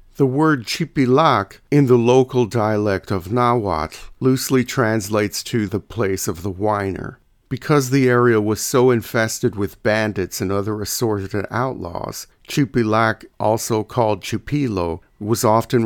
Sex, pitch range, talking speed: male, 100-125 Hz, 130 wpm